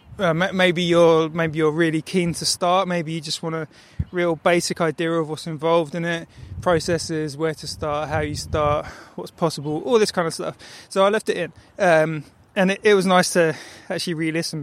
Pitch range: 150-170 Hz